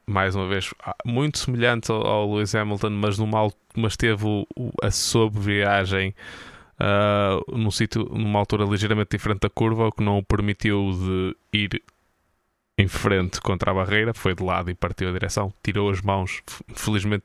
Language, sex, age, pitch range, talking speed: Portuguese, male, 20-39, 95-115 Hz, 165 wpm